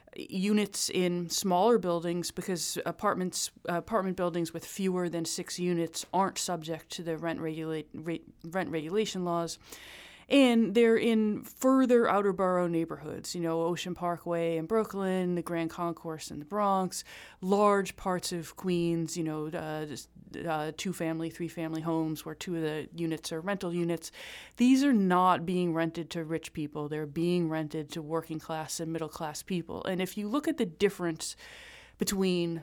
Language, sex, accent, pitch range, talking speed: English, female, American, 165-190 Hz, 165 wpm